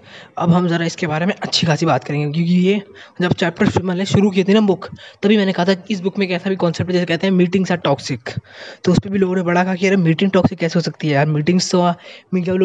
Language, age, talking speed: Hindi, 20-39, 270 wpm